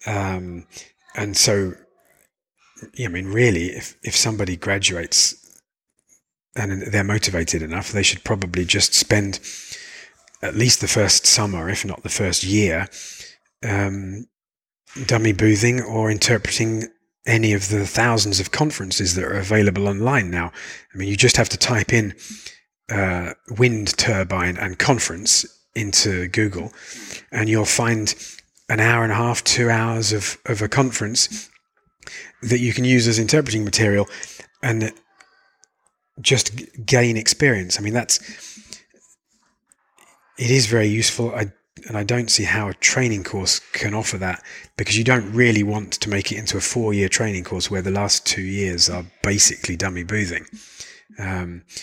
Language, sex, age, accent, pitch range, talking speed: English, male, 40-59, British, 95-115 Hz, 150 wpm